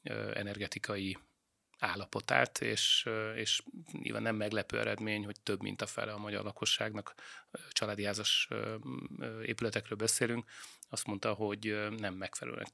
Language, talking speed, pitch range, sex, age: Hungarian, 115 wpm, 105-115 Hz, male, 30-49